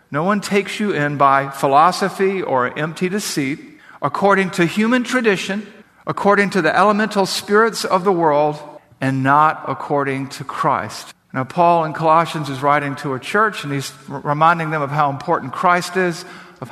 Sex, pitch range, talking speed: male, 140-185 Hz, 165 wpm